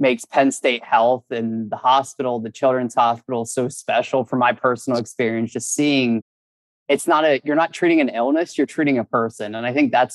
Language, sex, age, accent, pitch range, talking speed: English, male, 20-39, American, 115-130 Hz, 200 wpm